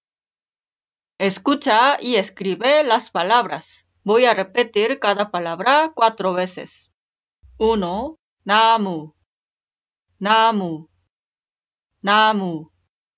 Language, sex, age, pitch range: Korean, female, 30-49, 180-245 Hz